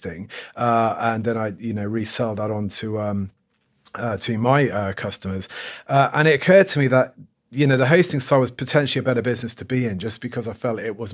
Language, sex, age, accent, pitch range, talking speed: English, male, 30-49, British, 105-125 Hz, 225 wpm